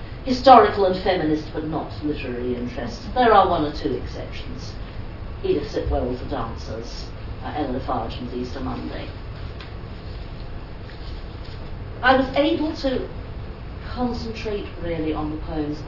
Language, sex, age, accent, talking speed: English, female, 50-69, British, 120 wpm